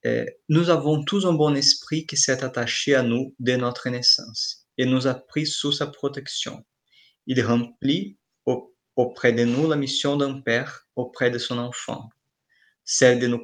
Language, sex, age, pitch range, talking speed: French, male, 20-39, 120-135 Hz, 165 wpm